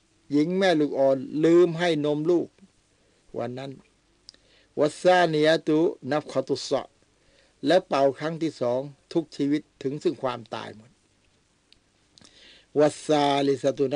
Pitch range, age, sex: 125-150 Hz, 60-79, male